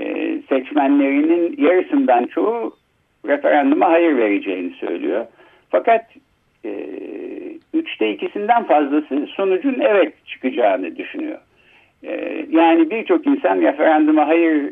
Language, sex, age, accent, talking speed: Turkish, male, 60-79, native, 90 wpm